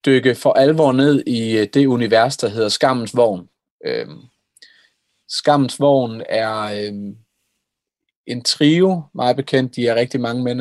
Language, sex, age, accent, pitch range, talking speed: Danish, male, 30-49, native, 115-145 Hz, 140 wpm